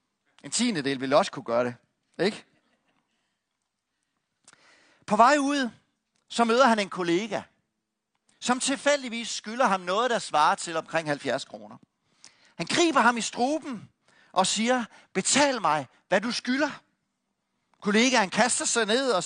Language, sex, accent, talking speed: Danish, male, native, 140 wpm